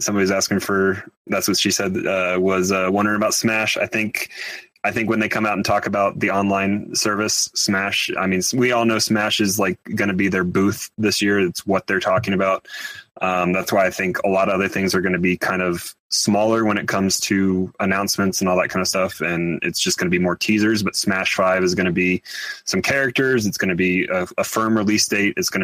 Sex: male